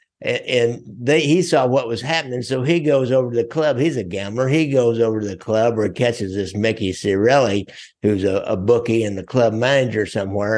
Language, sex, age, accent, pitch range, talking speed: English, male, 60-79, American, 105-135 Hz, 215 wpm